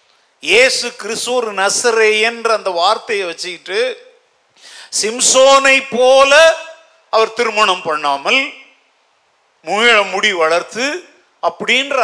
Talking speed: 50 wpm